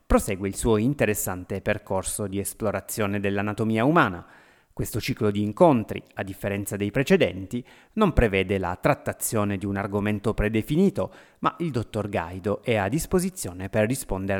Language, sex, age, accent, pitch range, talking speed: Italian, male, 30-49, native, 100-135 Hz, 140 wpm